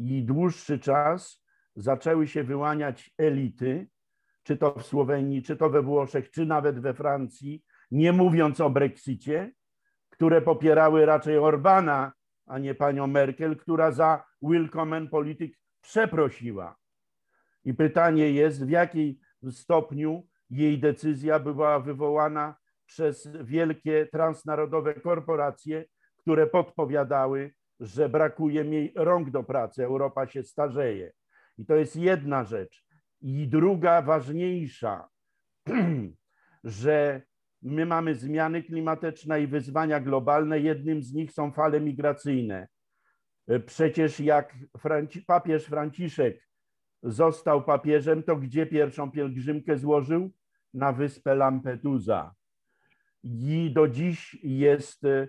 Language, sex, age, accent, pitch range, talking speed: Polish, male, 50-69, native, 140-160 Hz, 110 wpm